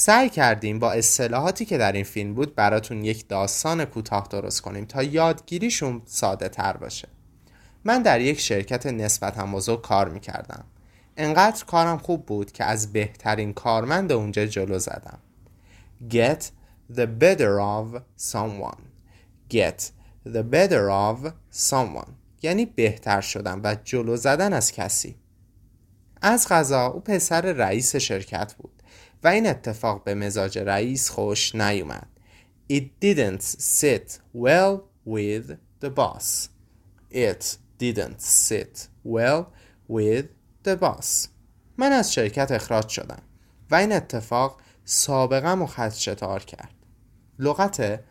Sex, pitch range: male, 100-135 Hz